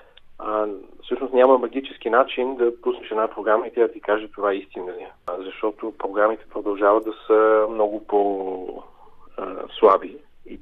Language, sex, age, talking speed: Bulgarian, male, 40-59, 155 wpm